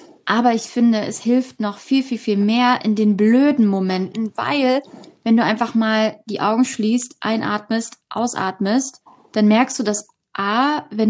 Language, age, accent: German, 20-39, German